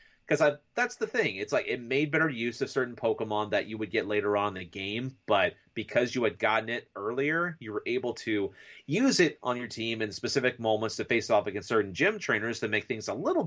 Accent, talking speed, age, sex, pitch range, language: American, 235 wpm, 30-49, male, 110-145 Hz, English